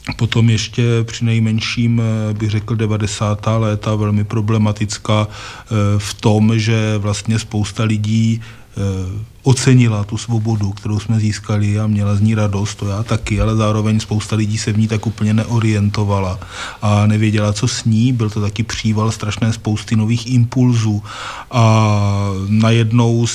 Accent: native